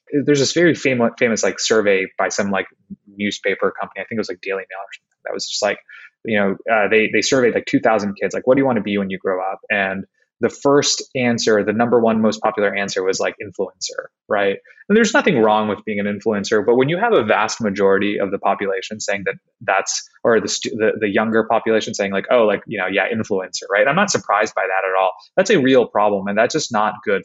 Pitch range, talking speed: 100-130 Hz, 245 wpm